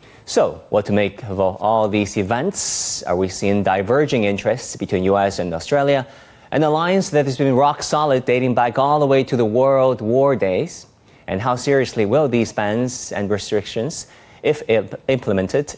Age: 30-49